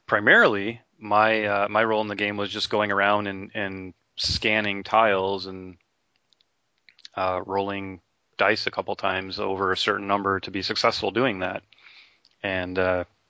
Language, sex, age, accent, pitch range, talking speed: English, male, 30-49, American, 95-110 Hz, 150 wpm